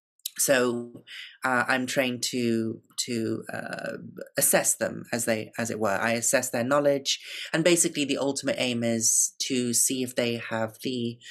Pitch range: 115-145 Hz